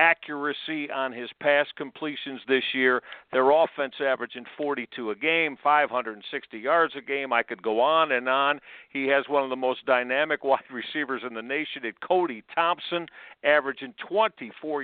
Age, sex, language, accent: 50-69, male, English, American